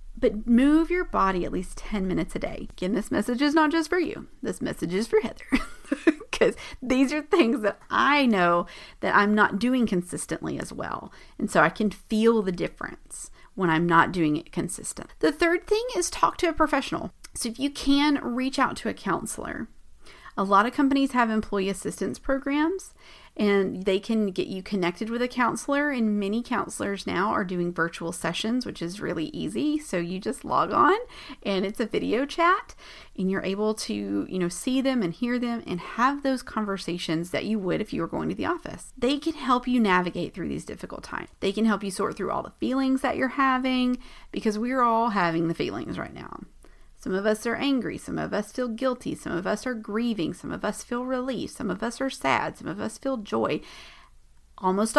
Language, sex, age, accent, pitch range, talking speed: English, female, 40-59, American, 195-275 Hz, 210 wpm